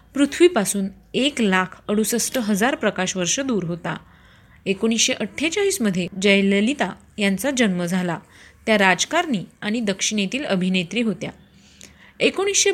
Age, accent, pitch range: 30-49, native, 190-250 Hz